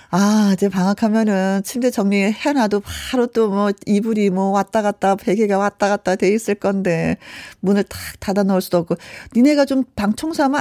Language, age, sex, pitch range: Korean, 40-59, female, 190-260 Hz